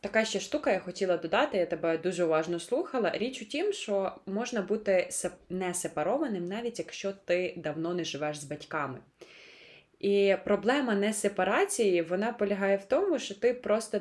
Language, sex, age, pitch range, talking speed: Ukrainian, female, 20-39, 170-225 Hz, 165 wpm